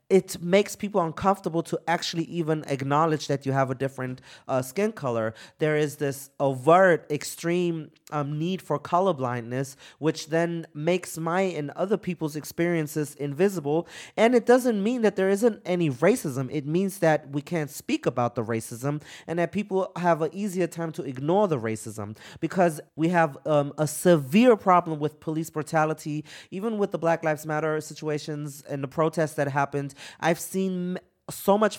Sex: male